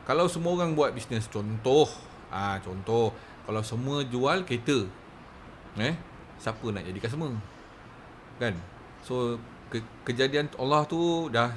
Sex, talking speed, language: male, 130 wpm, Malay